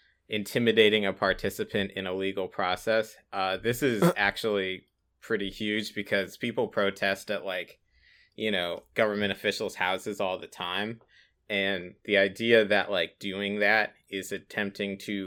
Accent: American